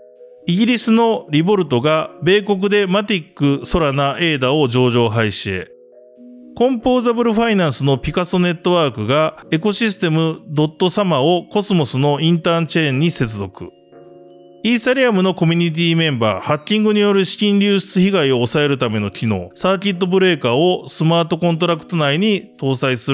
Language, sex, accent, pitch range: Japanese, male, native, 125-195 Hz